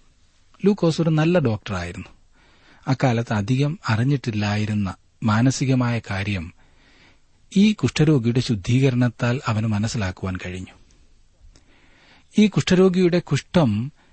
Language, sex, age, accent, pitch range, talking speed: Malayalam, male, 40-59, native, 95-135 Hz, 75 wpm